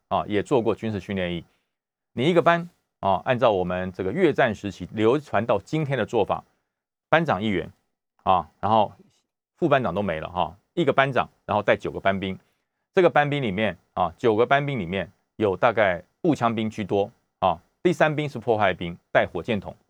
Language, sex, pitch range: Chinese, male, 100-160 Hz